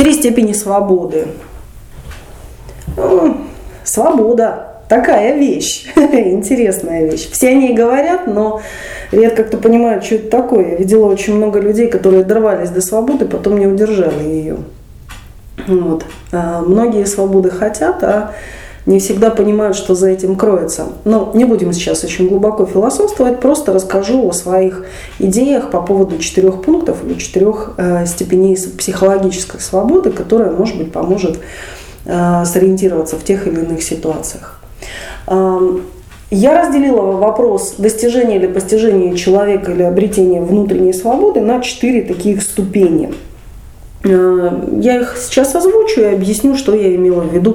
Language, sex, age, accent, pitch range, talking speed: Russian, female, 20-39, native, 185-225 Hz, 125 wpm